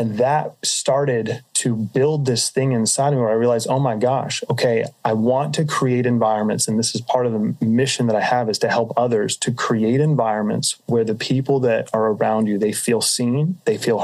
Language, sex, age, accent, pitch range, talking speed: English, male, 30-49, American, 115-135 Hz, 220 wpm